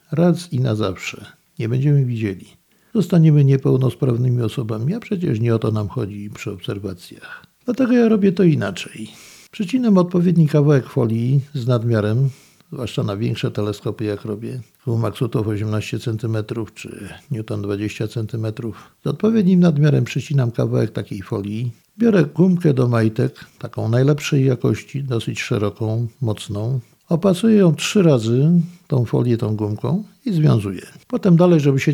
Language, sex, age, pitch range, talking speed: Polish, male, 50-69, 115-165 Hz, 140 wpm